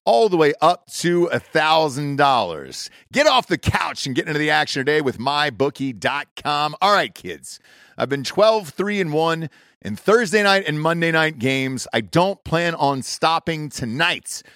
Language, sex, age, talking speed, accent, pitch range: English, male, 40-59, 175 wpm, American, 135-180 Hz